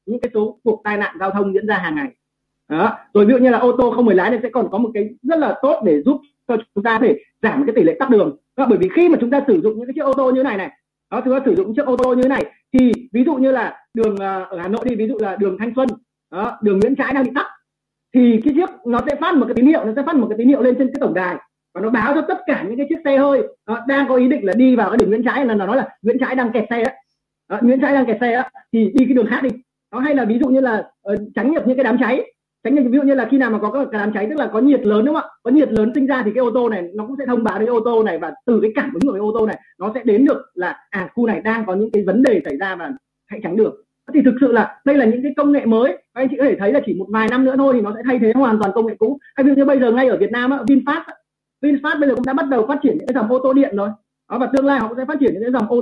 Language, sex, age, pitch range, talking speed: Vietnamese, male, 30-49, 220-275 Hz, 340 wpm